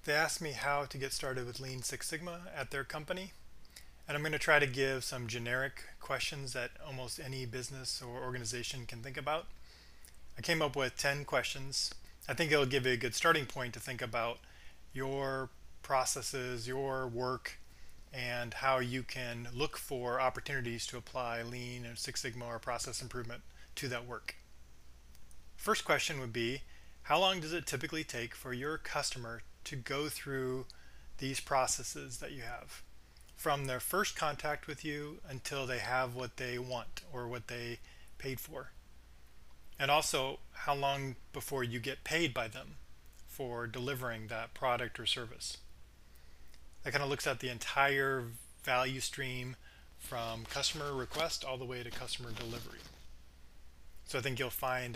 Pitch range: 115-135 Hz